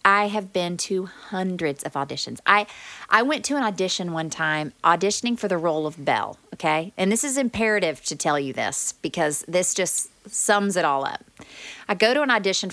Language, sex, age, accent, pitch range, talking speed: English, female, 30-49, American, 165-210 Hz, 200 wpm